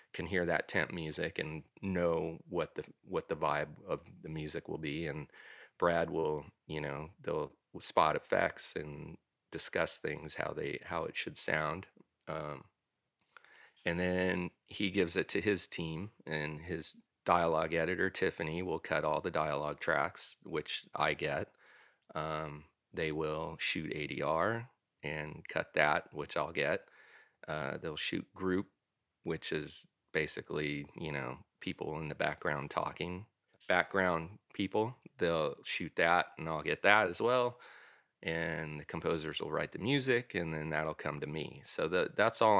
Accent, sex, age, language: American, male, 30-49, English